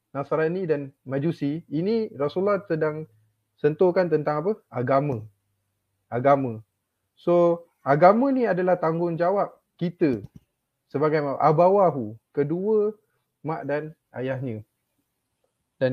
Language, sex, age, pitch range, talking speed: Malay, male, 20-39, 140-180 Hz, 90 wpm